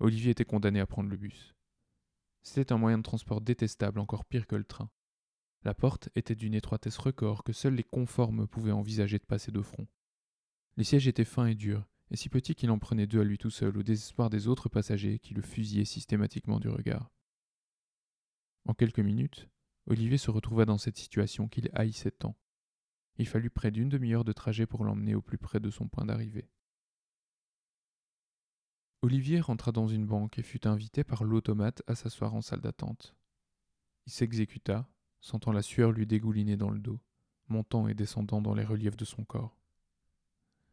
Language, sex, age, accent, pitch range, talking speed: French, male, 20-39, French, 105-120 Hz, 185 wpm